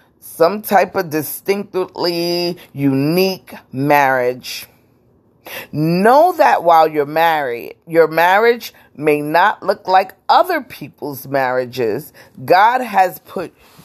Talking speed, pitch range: 100 wpm, 170-235 Hz